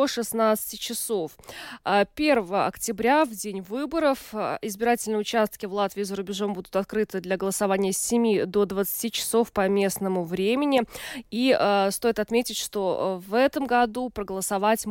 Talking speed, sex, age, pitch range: 135 wpm, female, 20-39, 195-235 Hz